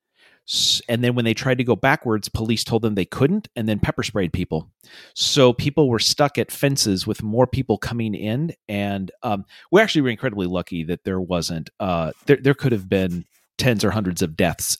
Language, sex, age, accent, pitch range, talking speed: English, male, 40-59, American, 100-130 Hz, 205 wpm